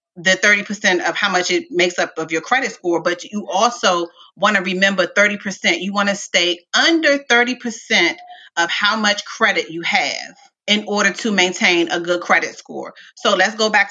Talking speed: 185 wpm